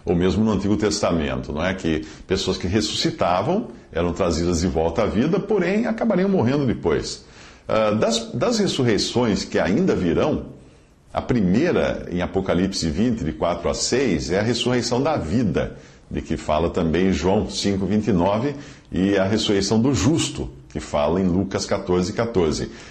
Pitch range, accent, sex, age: 90-115 Hz, Brazilian, male, 50-69